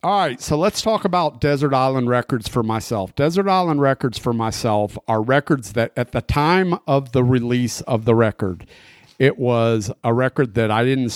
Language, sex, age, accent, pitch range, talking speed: English, male, 50-69, American, 105-125 Hz, 190 wpm